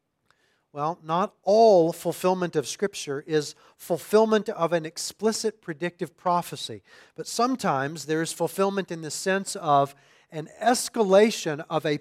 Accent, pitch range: American, 155-205 Hz